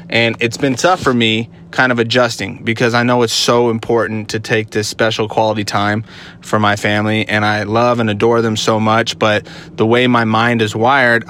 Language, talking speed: English, 205 wpm